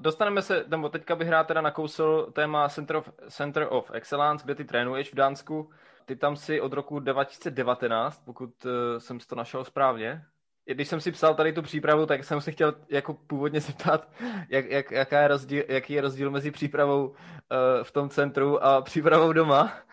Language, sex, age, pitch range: Czech, male, 20-39, 125-155 Hz